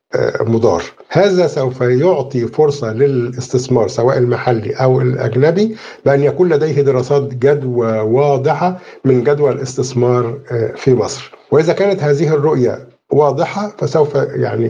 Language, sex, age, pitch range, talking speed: Arabic, male, 50-69, 120-150 Hz, 115 wpm